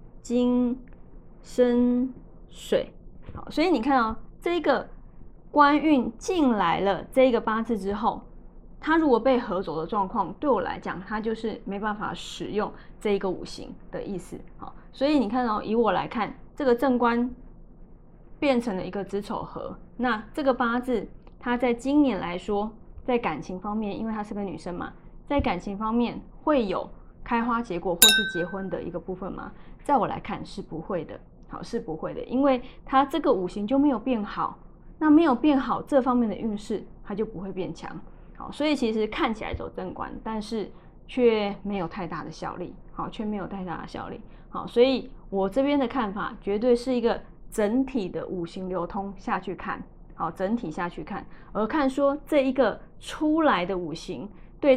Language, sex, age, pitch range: Chinese, female, 20-39, 195-260 Hz